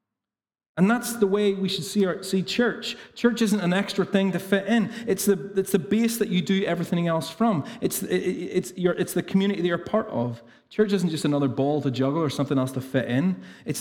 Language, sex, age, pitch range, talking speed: English, male, 30-49, 145-195 Hz, 240 wpm